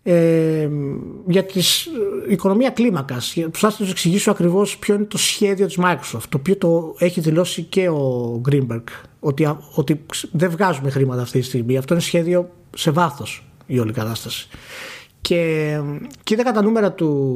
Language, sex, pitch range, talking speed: Greek, male, 130-185 Hz, 150 wpm